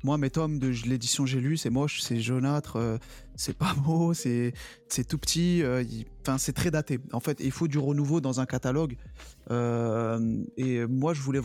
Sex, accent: male, French